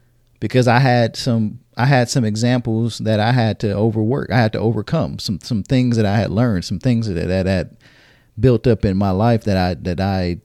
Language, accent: English, American